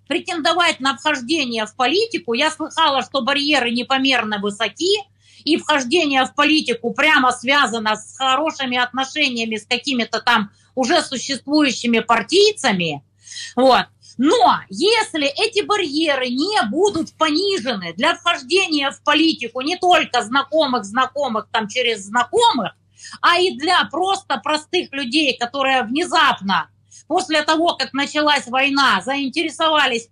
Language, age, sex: Russian, 30-49, female